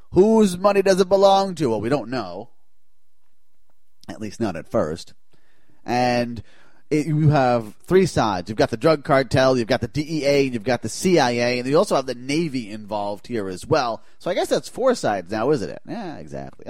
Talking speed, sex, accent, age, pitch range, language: 200 wpm, male, American, 30-49, 120-170 Hz, English